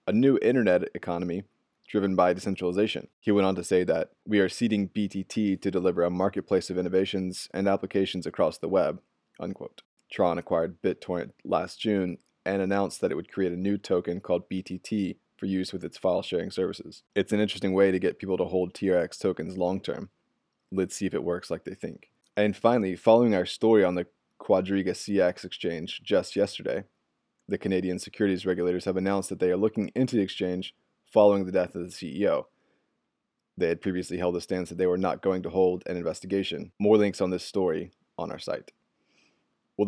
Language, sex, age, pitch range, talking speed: English, male, 20-39, 90-100 Hz, 190 wpm